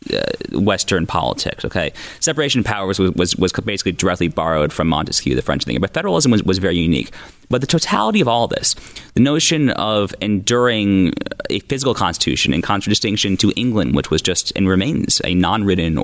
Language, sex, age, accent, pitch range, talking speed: English, male, 30-49, American, 95-140 Hz, 185 wpm